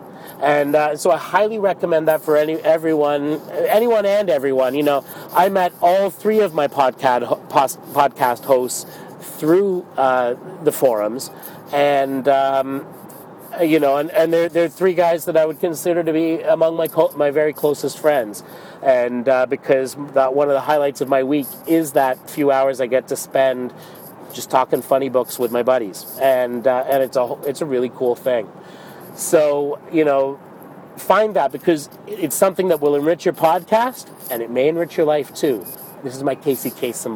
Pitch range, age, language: 130-165 Hz, 30-49, English